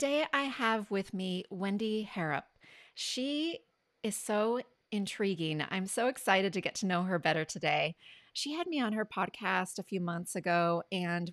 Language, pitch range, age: English, 175-225 Hz, 30-49